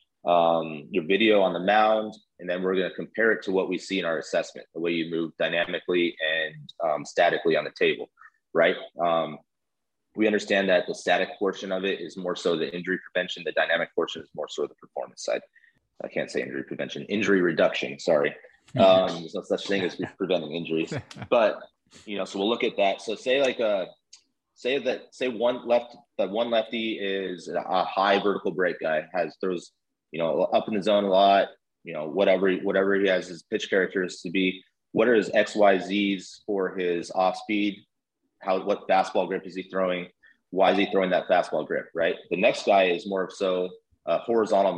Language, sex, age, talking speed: English, male, 30-49, 205 wpm